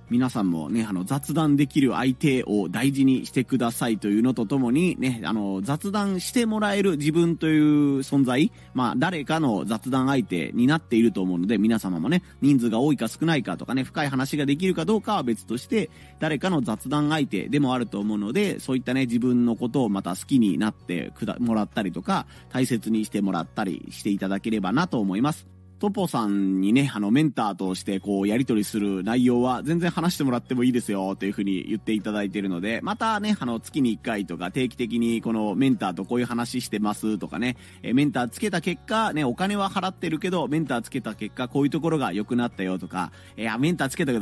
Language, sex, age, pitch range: Japanese, male, 30-49, 105-150 Hz